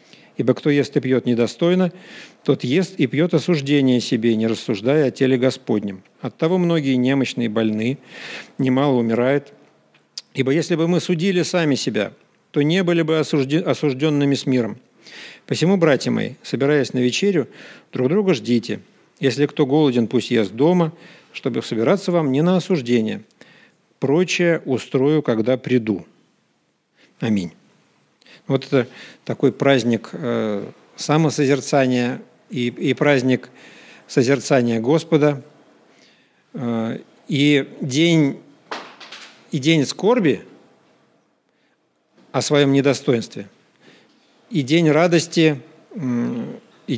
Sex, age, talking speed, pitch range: male, 50-69, 105 wpm, 125-160 Hz